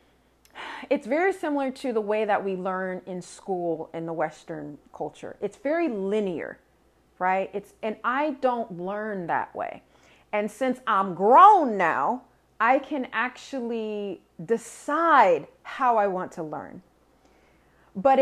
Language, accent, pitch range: English, American, 190-275 Hz